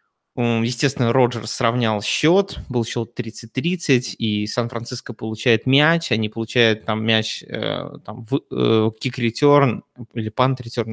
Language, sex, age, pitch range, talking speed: Russian, male, 20-39, 115-130 Hz, 105 wpm